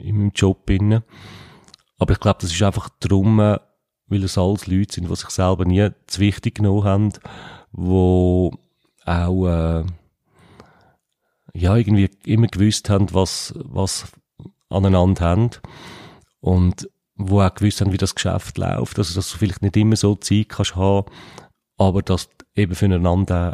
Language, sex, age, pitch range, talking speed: German, male, 40-59, 95-105 Hz, 150 wpm